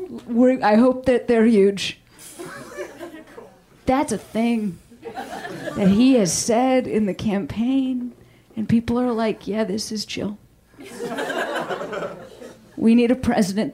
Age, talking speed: 30-49, 120 wpm